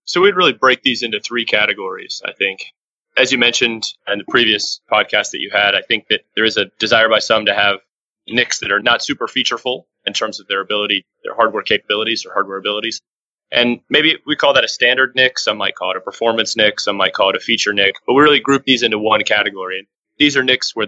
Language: English